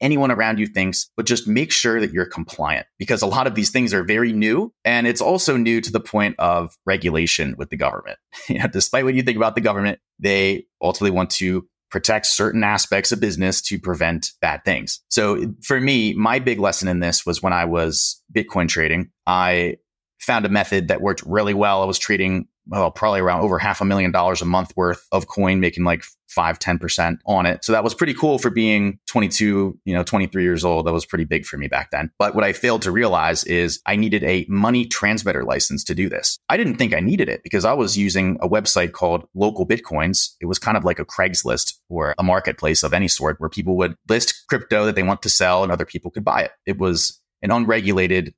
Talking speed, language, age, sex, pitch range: 225 wpm, English, 30-49, male, 90-110 Hz